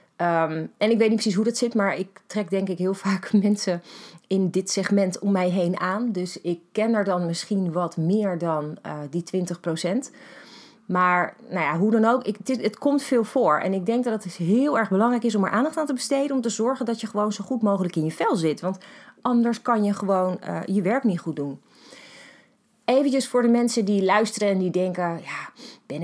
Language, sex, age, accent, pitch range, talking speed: Dutch, female, 30-49, Dutch, 160-220 Hz, 225 wpm